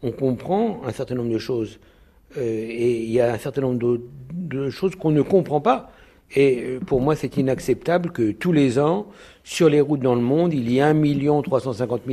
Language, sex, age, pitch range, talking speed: French, male, 60-79, 130-165 Hz, 205 wpm